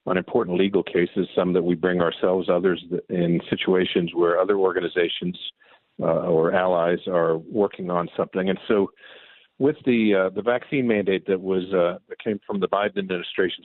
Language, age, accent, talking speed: English, 50-69, American, 170 wpm